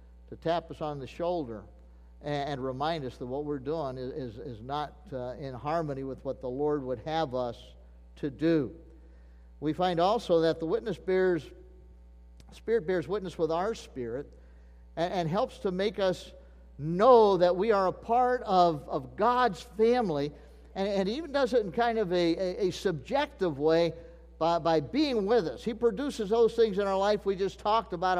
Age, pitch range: 50-69, 125-205 Hz